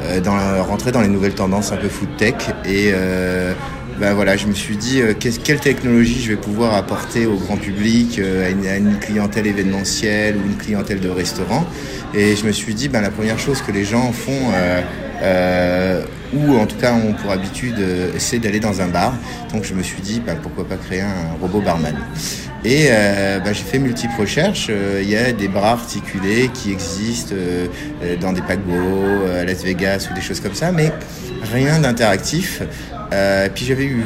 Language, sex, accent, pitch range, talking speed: French, male, French, 95-120 Hz, 200 wpm